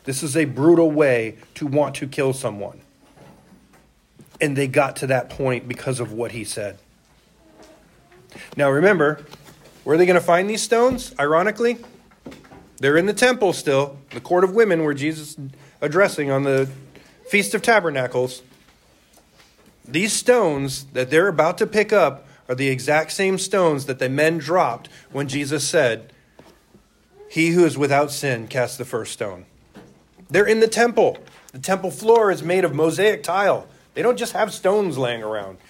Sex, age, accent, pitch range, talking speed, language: male, 40-59, American, 135-200 Hz, 165 wpm, English